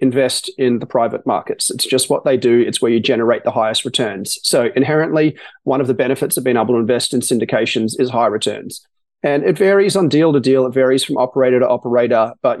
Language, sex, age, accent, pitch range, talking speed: English, male, 30-49, Australian, 125-145 Hz, 225 wpm